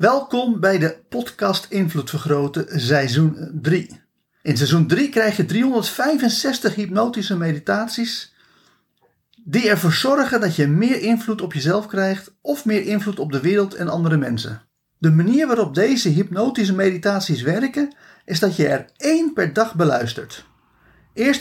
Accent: Dutch